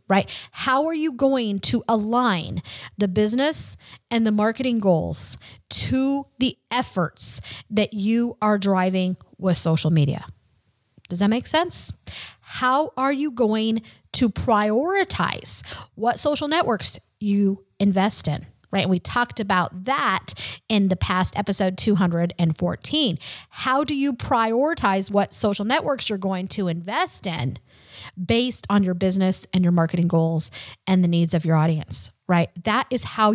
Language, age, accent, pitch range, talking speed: English, 40-59, American, 180-240 Hz, 145 wpm